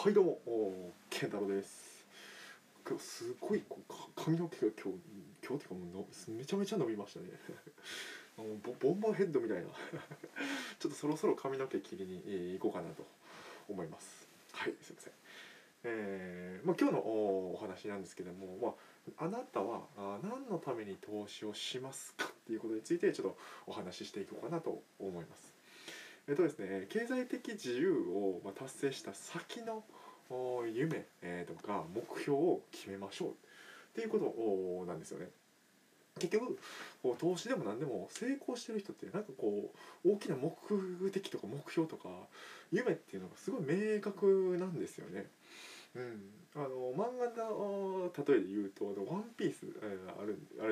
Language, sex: Japanese, male